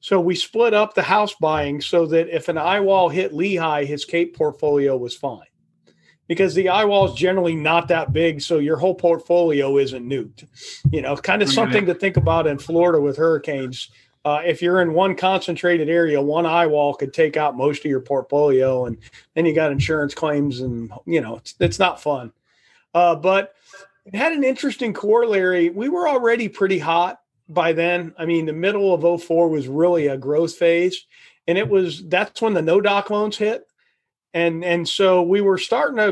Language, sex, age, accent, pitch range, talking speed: English, male, 40-59, American, 150-195 Hz, 195 wpm